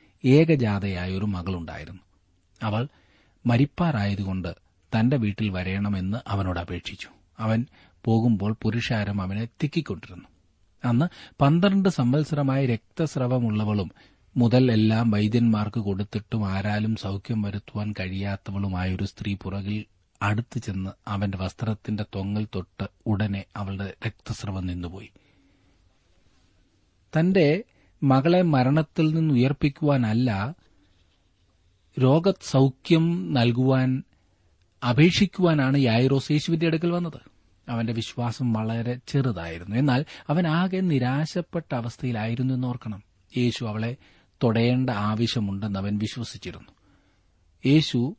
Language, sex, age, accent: Malayalam, male, 40-59, native